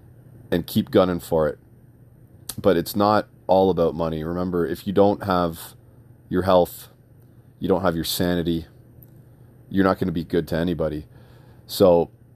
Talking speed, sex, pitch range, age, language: 155 wpm, male, 85-120 Hz, 40-59, English